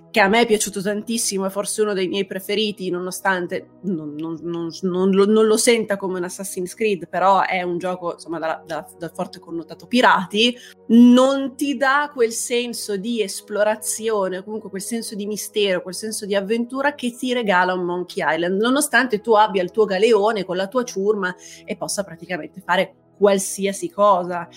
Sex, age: female, 30-49